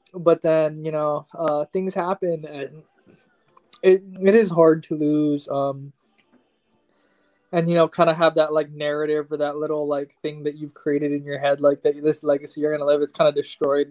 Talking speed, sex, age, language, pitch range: 200 wpm, male, 20-39, English, 145-160 Hz